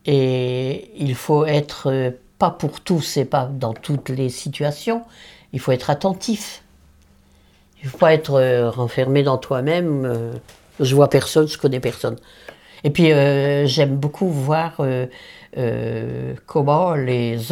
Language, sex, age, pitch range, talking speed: French, female, 60-79, 125-170 Hz, 140 wpm